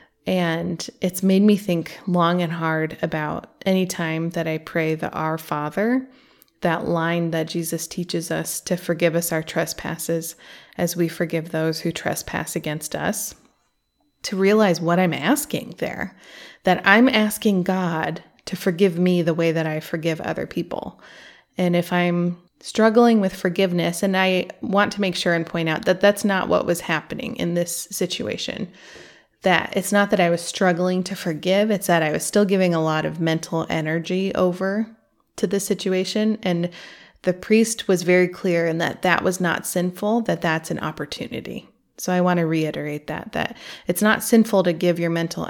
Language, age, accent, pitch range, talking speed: English, 20-39, American, 165-195 Hz, 175 wpm